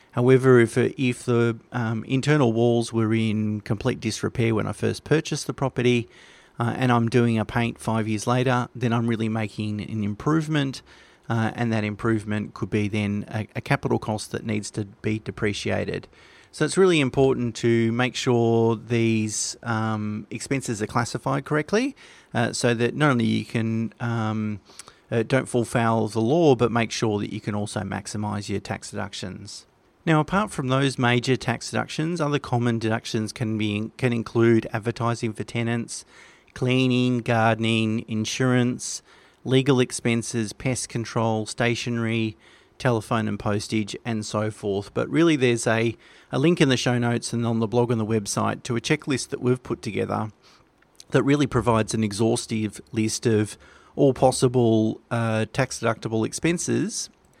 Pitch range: 110-125 Hz